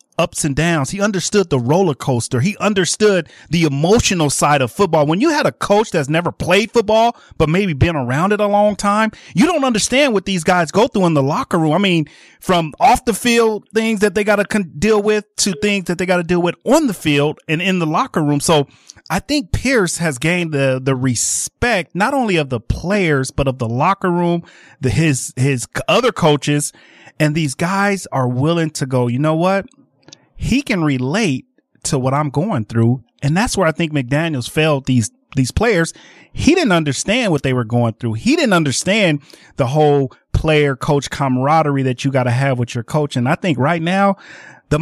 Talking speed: 210 wpm